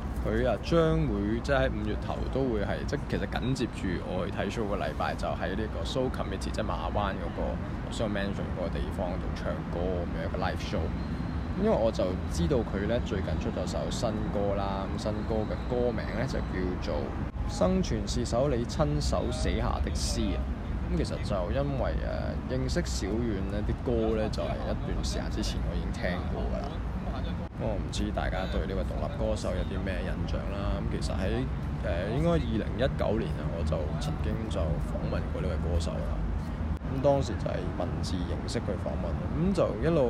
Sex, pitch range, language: male, 80-100 Hz, Chinese